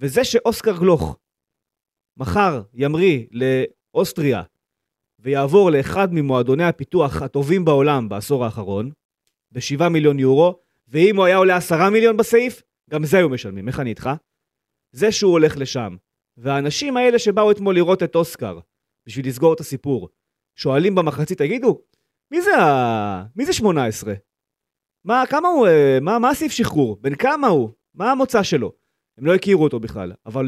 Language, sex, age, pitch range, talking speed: Hebrew, male, 30-49, 125-195 Hz, 140 wpm